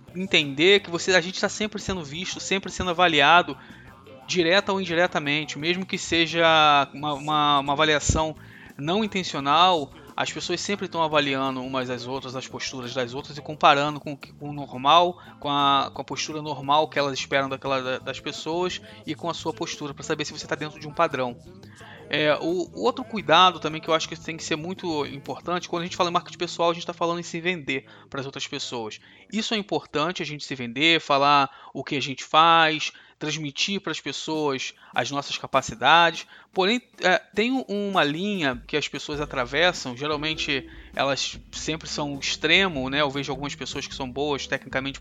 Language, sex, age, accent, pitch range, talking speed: Portuguese, male, 20-39, Brazilian, 140-175 Hz, 190 wpm